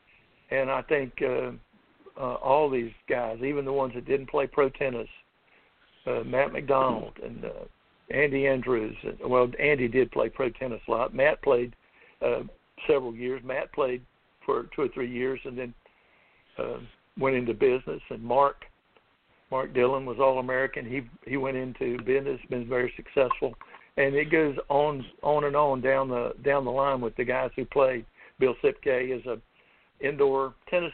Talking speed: 170 wpm